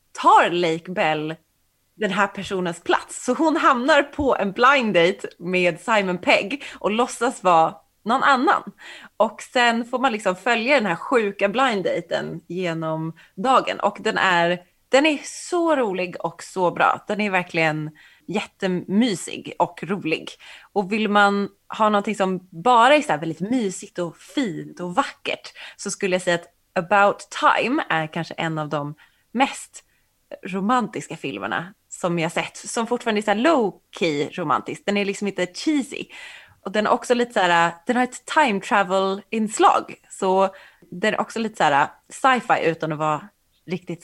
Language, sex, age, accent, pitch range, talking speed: Swedish, female, 20-39, native, 175-235 Hz, 160 wpm